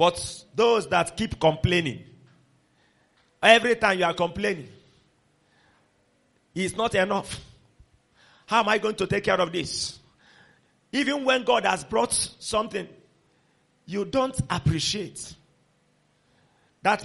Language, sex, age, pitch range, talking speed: English, male, 40-59, 140-225 Hz, 115 wpm